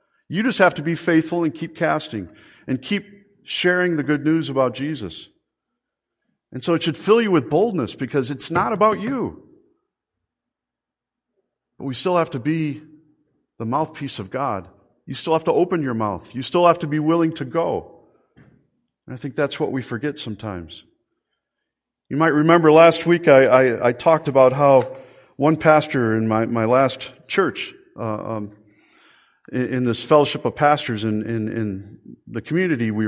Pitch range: 120-165 Hz